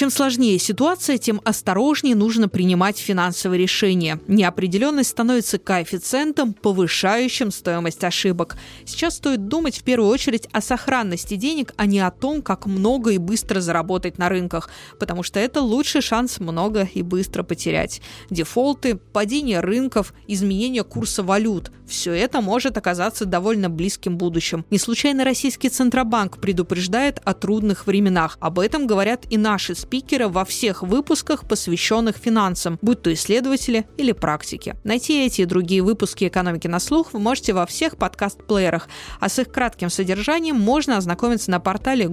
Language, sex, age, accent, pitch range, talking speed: Russian, female, 20-39, native, 185-245 Hz, 150 wpm